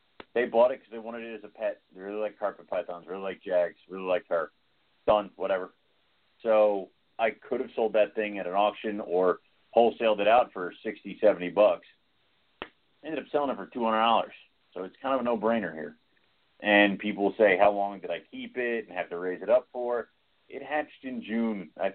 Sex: male